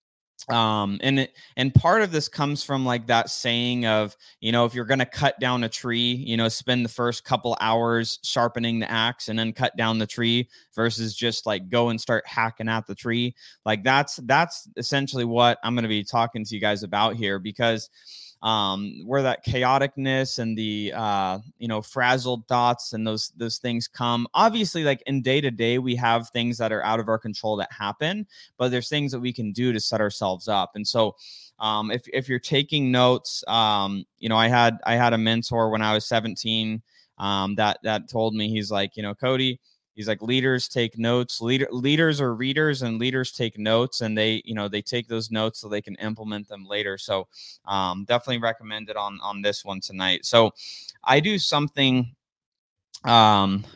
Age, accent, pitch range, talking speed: 20-39, American, 110-130 Hz, 200 wpm